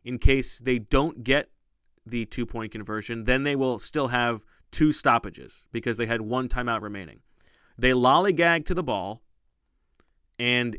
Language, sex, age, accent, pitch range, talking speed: English, male, 30-49, American, 115-145 Hz, 150 wpm